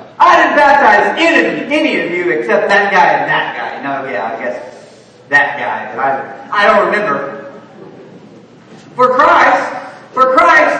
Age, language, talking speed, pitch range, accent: 40-59, English, 155 wpm, 260-345 Hz, American